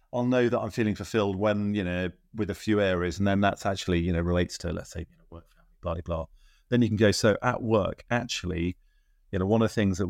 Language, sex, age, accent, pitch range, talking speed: English, male, 30-49, British, 85-105 Hz, 255 wpm